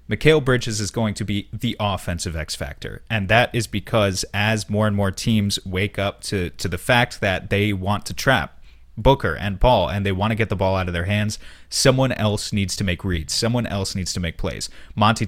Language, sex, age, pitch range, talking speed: English, male, 30-49, 95-110 Hz, 225 wpm